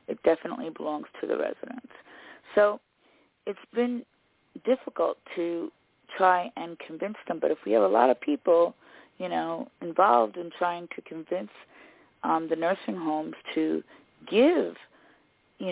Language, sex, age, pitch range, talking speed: English, female, 30-49, 160-200 Hz, 140 wpm